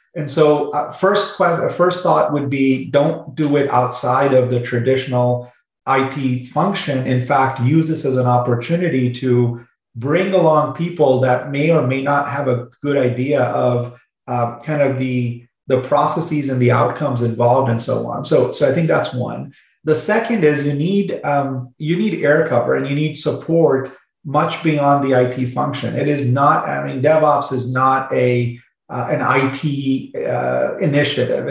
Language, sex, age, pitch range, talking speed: English, male, 30-49, 125-145 Hz, 170 wpm